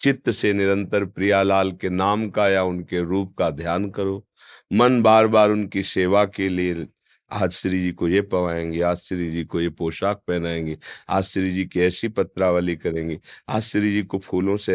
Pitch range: 90-115 Hz